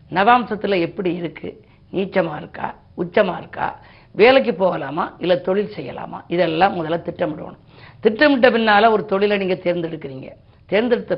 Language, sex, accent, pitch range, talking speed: Tamil, female, native, 170-210 Hz, 120 wpm